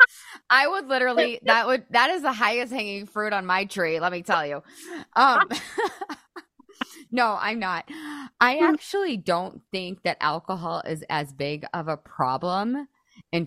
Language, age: English, 20-39